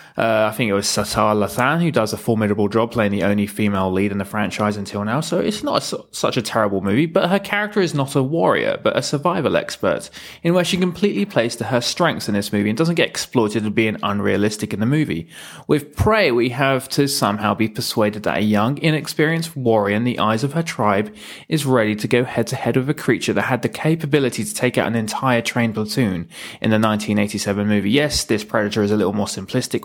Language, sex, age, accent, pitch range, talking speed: English, male, 20-39, British, 105-130 Hz, 225 wpm